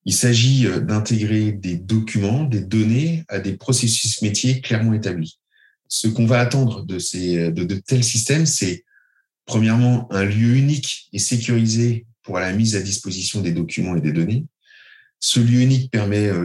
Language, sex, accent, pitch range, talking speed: French, male, French, 105-125 Hz, 160 wpm